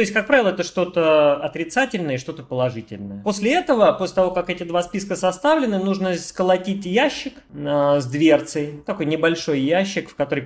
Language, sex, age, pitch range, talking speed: Russian, male, 30-49, 135-185 Hz, 165 wpm